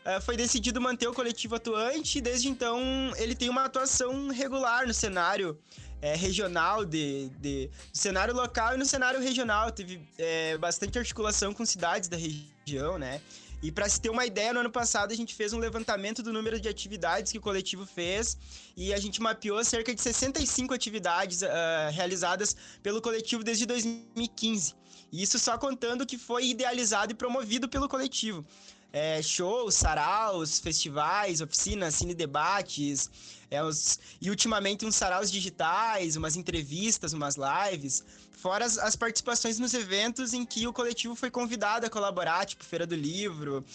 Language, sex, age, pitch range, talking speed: Portuguese, male, 20-39, 175-240 Hz, 150 wpm